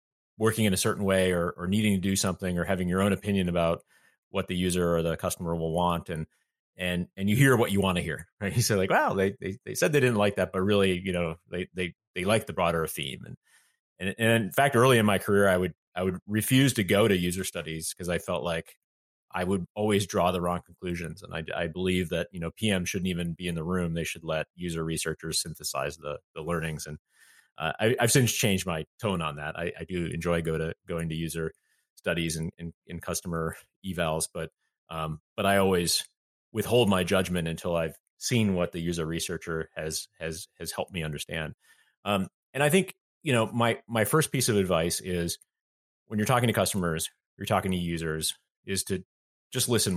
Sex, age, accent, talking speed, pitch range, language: male, 30-49, American, 225 wpm, 85-100 Hz, English